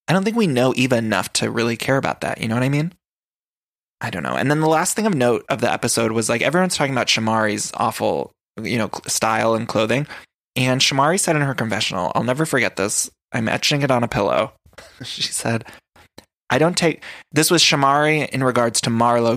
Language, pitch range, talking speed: English, 115-140 Hz, 215 wpm